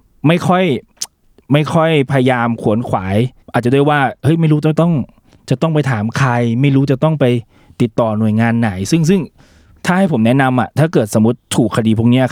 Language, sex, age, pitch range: Thai, male, 20-39, 115-145 Hz